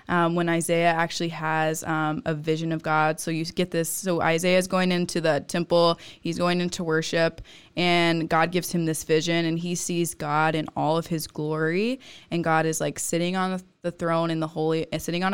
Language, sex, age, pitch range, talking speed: English, female, 20-39, 160-180 Hz, 205 wpm